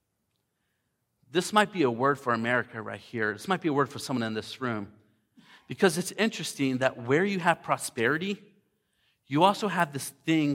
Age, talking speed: 40-59, 180 wpm